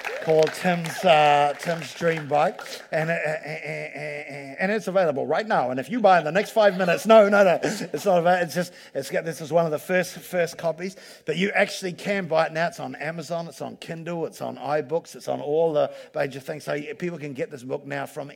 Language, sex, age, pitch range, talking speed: English, male, 50-69, 140-175 Hz, 250 wpm